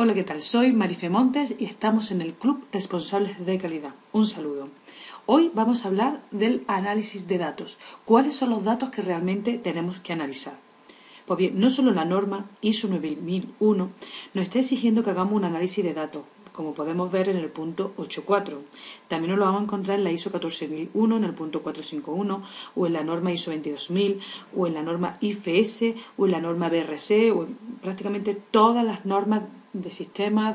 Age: 40-59